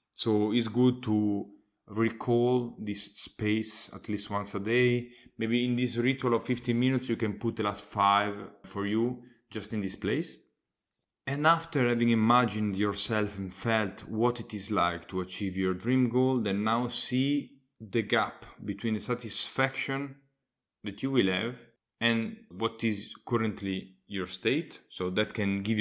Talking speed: 160 wpm